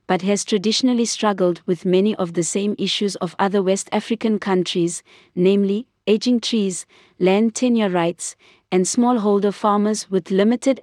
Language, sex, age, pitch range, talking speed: English, female, 20-39, 190-215 Hz, 145 wpm